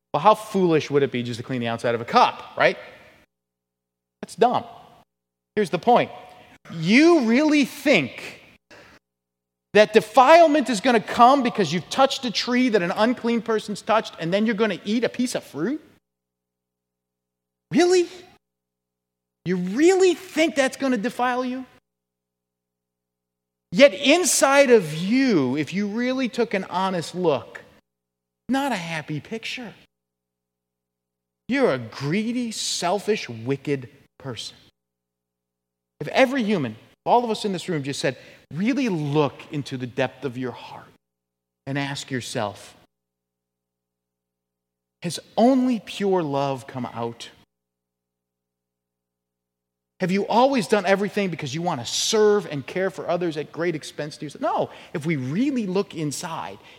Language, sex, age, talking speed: English, male, 30-49, 140 wpm